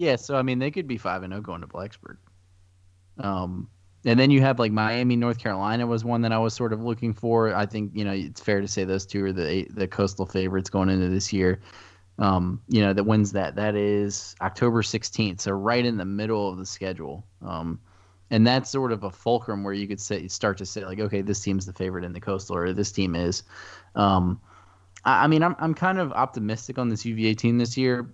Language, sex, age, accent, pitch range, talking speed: English, male, 20-39, American, 95-115 Hz, 230 wpm